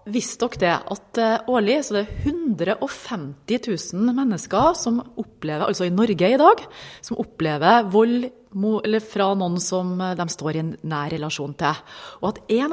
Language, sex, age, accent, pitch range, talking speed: English, female, 30-49, Swedish, 170-225 Hz, 150 wpm